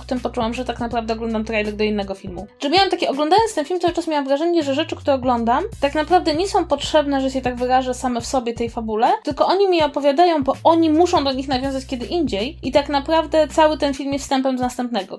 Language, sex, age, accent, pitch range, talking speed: Polish, female, 20-39, native, 235-300 Hz, 240 wpm